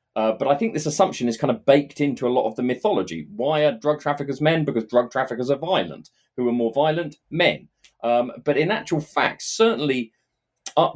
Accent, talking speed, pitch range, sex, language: British, 210 wpm, 120-165 Hz, male, English